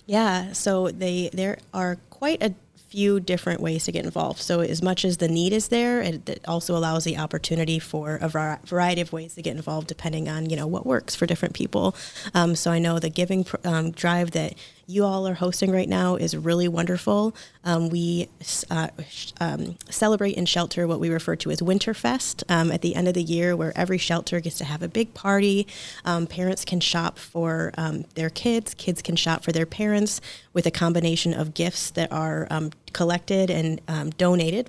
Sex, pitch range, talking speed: female, 160-180 Hz, 200 wpm